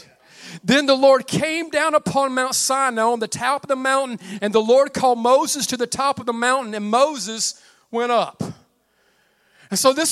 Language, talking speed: English, 190 wpm